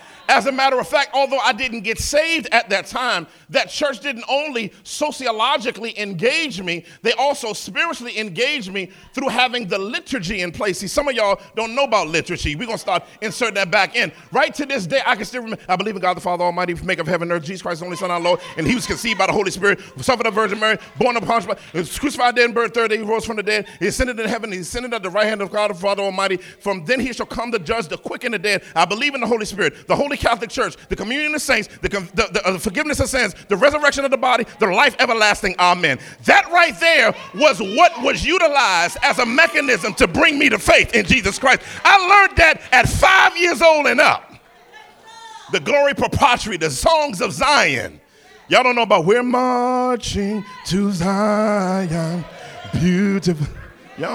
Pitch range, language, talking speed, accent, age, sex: 195-270 Hz, English, 220 wpm, American, 40-59, male